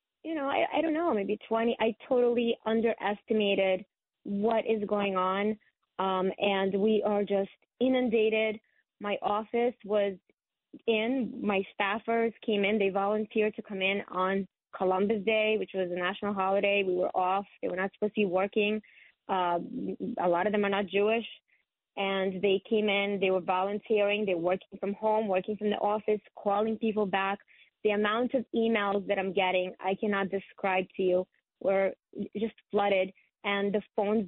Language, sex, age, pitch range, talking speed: English, female, 20-39, 195-225 Hz, 170 wpm